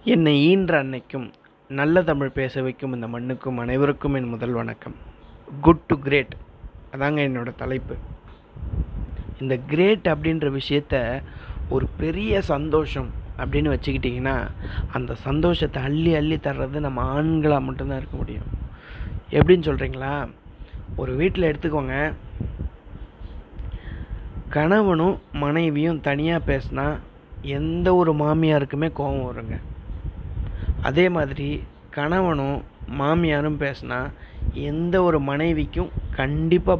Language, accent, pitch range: Tamil, native, 105-155 Hz